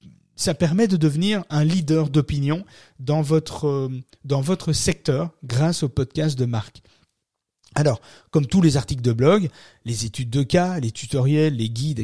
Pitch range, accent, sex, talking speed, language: 125-165 Hz, French, male, 160 wpm, French